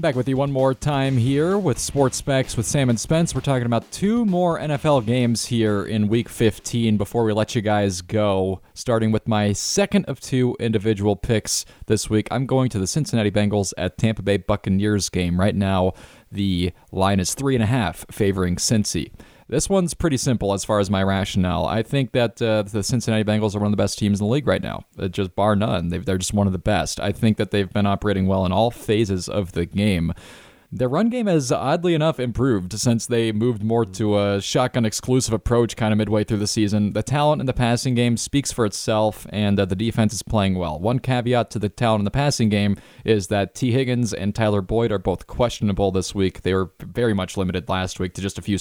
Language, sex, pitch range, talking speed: English, male, 100-120 Hz, 225 wpm